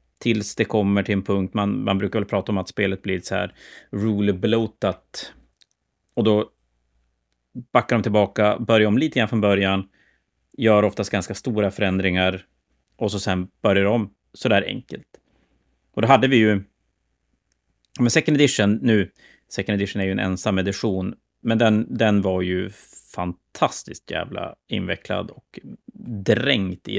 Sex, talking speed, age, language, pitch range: male, 150 wpm, 30-49, Swedish, 95-110 Hz